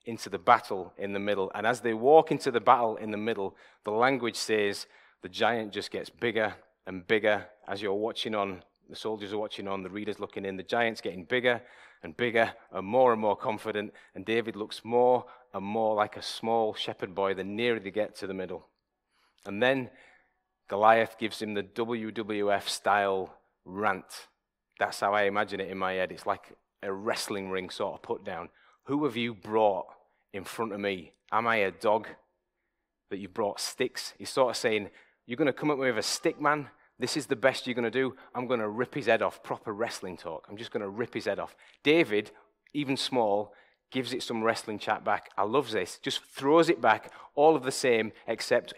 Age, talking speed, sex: 30-49, 210 wpm, male